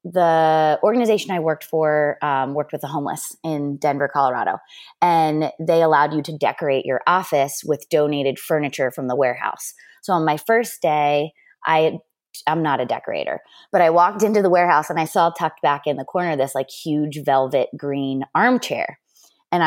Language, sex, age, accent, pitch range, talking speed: English, female, 20-39, American, 150-180 Hz, 175 wpm